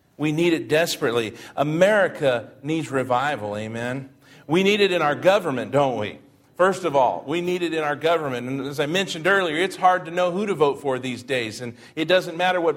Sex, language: male, English